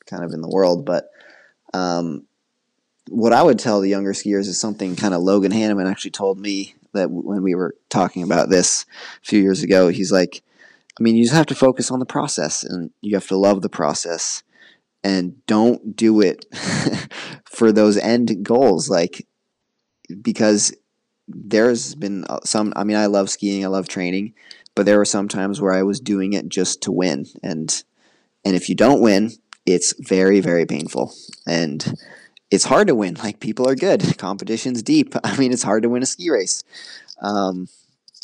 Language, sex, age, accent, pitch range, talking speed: English, male, 20-39, American, 95-110 Hz, 185 wpm